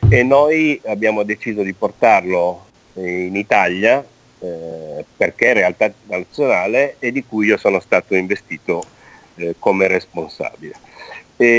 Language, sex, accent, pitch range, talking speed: Italian, male, native, 90-115 Hz, 125 wpm